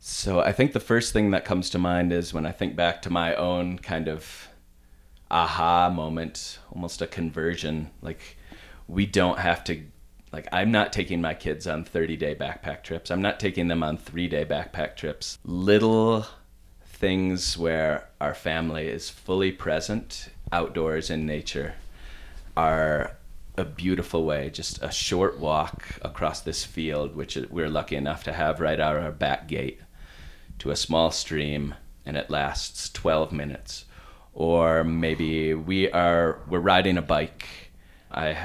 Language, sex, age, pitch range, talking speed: English, male, 30-49, 75-90 Hz, 155 wpm